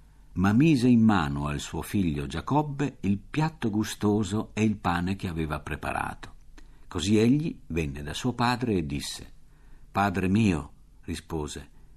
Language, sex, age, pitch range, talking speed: Italian, male, 50-69, 80-115 Hz, 140 wpm